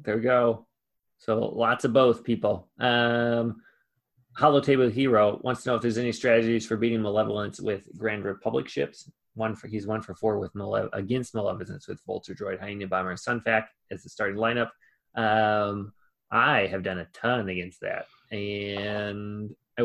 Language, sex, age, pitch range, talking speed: English, male, 20-39, 100-120 Hz, 170 wpm